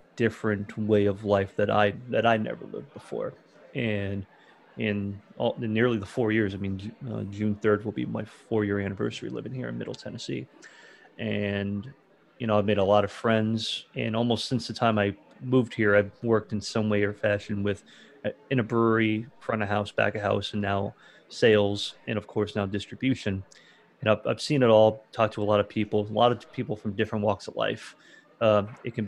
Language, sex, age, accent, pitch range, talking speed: English, male, 30-49, American, 105-115 Hz, 205 wpm